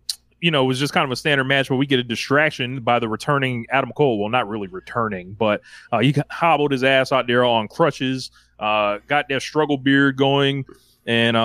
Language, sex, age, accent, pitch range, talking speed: English, male, 20-39, American, 115-145 Hz, 215 wpm